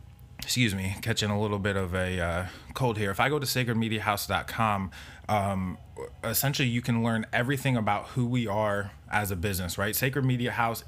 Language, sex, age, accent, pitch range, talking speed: English, male, 20-39, American, 100-115 Hz, 175 wpm